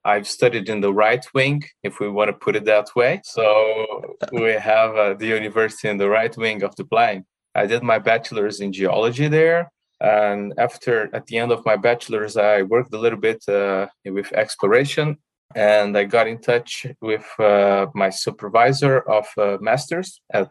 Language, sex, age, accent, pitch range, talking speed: English, male, 20-39, Brazilian, 100-130 Hz, 185 wpm